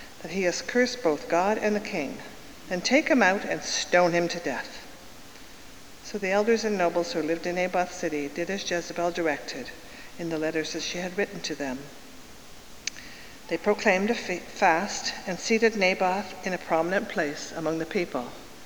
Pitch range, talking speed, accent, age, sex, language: 165-215 Hz, 175 wpm, American, 50-69, female, English